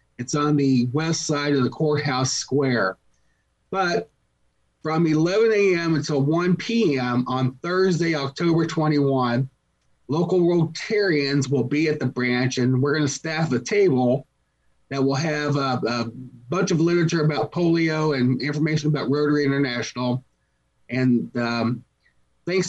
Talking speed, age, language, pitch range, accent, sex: 135 wpm, 30-49, English, 125-155 Hz, American, male